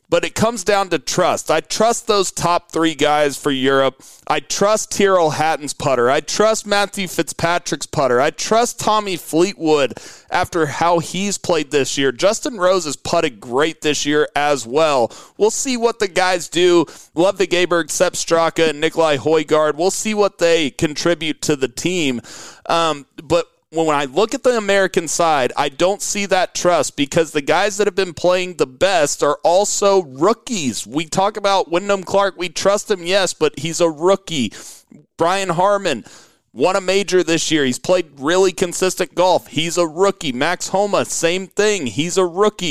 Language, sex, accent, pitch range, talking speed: English, male, American, 160-200 Hz, 175 wpm